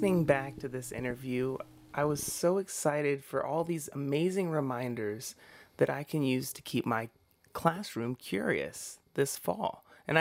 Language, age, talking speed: English, 30-49, 145 wpm